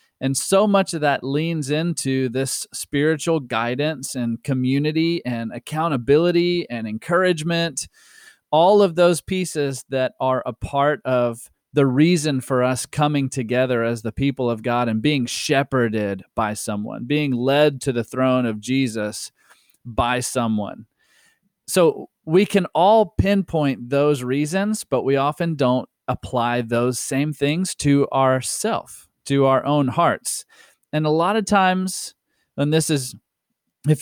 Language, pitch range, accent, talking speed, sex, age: English, 125-160 Hz, American, 140 wpm, male, 30-49